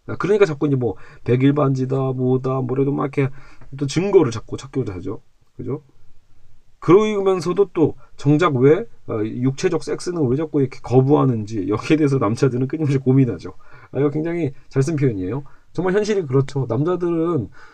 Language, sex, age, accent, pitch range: Korean, male, 40-59, native, 125-160 Hz